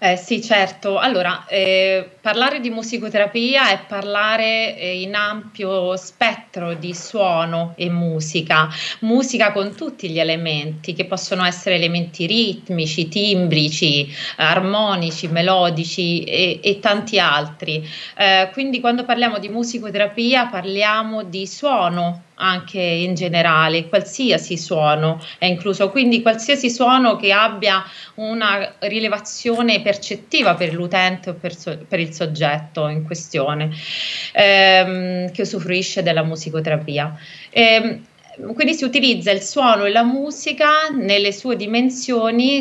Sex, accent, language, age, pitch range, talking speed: female, native, Italian, 30-49, 170-220 Hz, 120 wpm